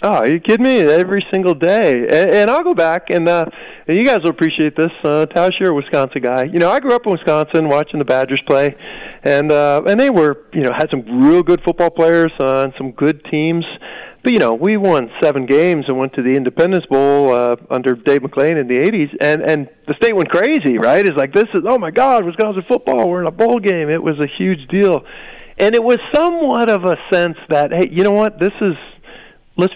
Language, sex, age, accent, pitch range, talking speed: English, male, 40-59, American, 140-185 Hz, 235 wpm